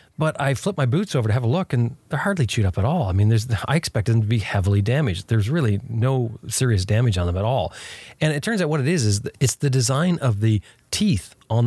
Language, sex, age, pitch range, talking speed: English, male, 30-49, 100-130 Hz, 260 wpm